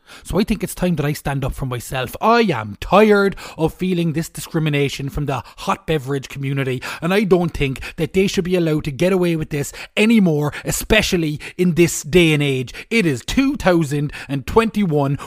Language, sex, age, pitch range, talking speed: English, male, 30-49, 110-165 Hz, 185 wpm